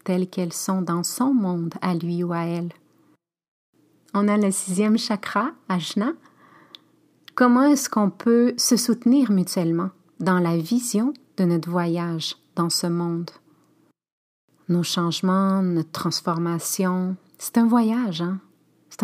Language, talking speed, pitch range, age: French, 130 wpm, 175-215 Hz, 30-49